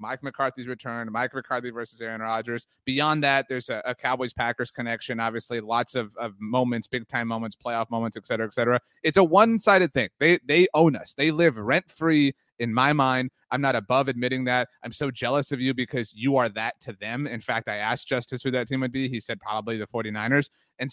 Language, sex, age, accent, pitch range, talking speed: English, male, 30-49, American, 125-195 Hz, 220 wpm